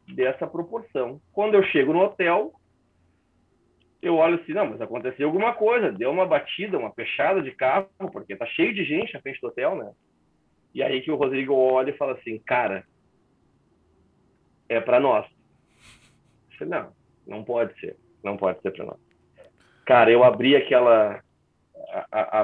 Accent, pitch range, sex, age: Brazilian, 130-210 Hz, male, 40-59